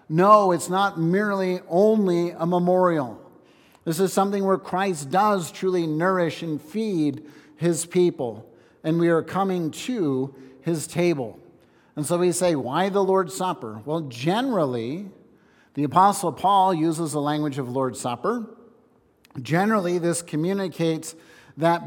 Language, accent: English, American